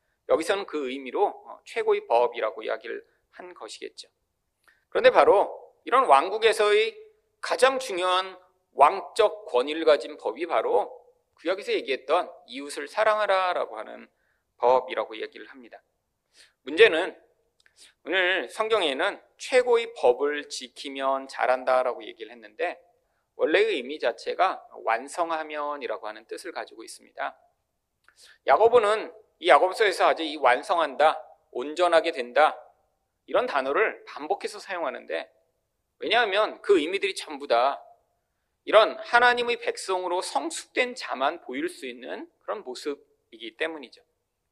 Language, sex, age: Korean, male, 40-59